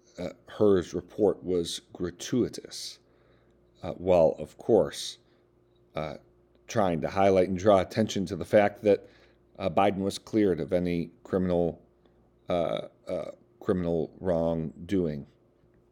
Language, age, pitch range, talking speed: English, 50-69, 85-115 Hz, 115 wpm